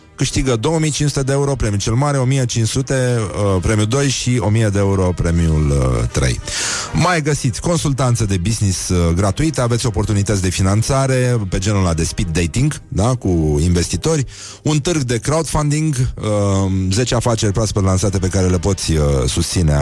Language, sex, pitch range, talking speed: Romanian, male, 95-135 Hz, 160 wpm